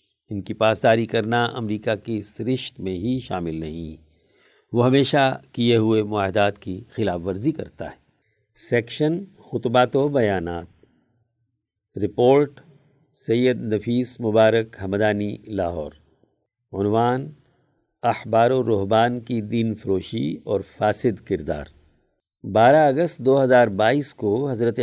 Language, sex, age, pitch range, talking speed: Urdu, male, 50-69, 105-125 Hz, 115 wpm